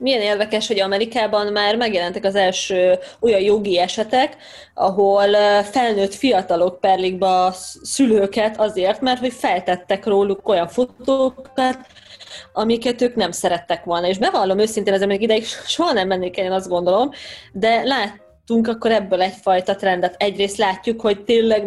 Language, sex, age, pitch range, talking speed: Hungarian, female, 20-39, 195-235 Hz, 145 wpm